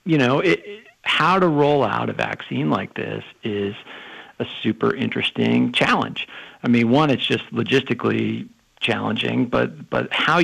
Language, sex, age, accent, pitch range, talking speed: English, male, 50-69, American, 110-145 Hz, 155 wpm